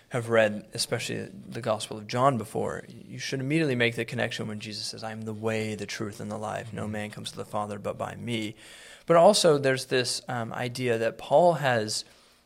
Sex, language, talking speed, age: male, English, 210 wpm, 20-39